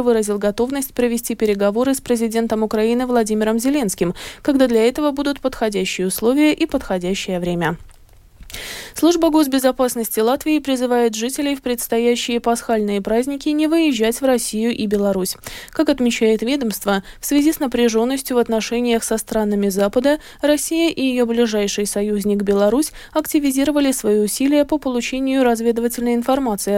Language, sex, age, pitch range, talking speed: Russian, female, 20-39, 215-275 Hz, 130 wpm